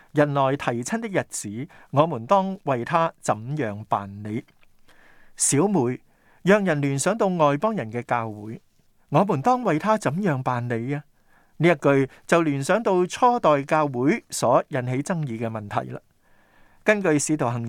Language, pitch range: Chinese, 125-180 Hz